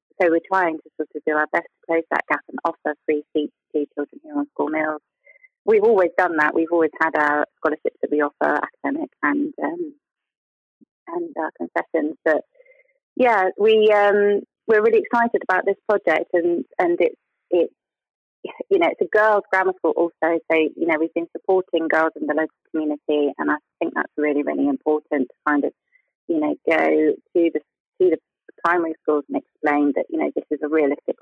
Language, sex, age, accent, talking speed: English, female, 30-49, British, 195 wpm